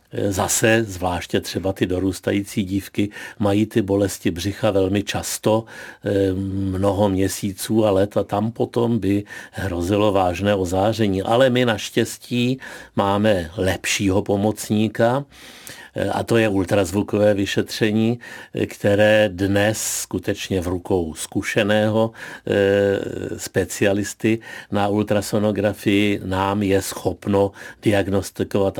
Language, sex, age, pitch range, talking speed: Czech, male, 50-69, 95-110 Hz, 100 wpm